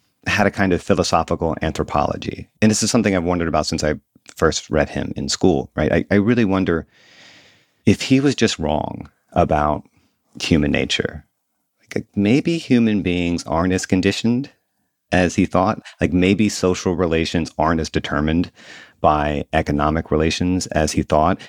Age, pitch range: 40-59, 80-100 Hz